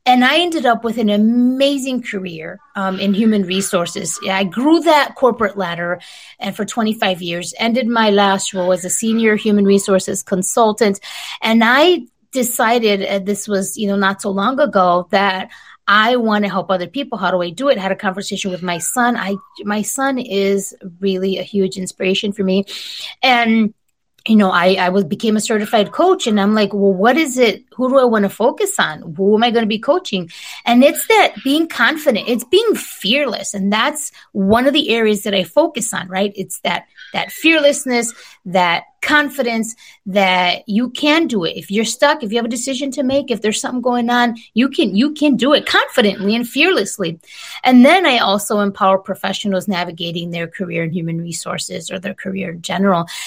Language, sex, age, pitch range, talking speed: English, female, 30-49, 190-250 Hz, 195 wpm